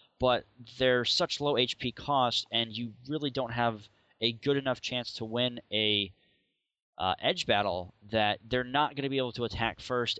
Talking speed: 180 wpm